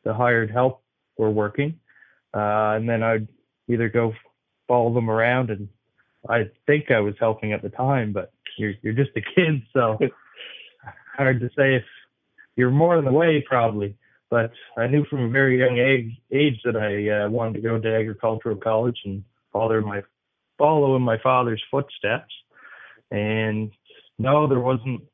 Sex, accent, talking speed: male, American, 170 wpm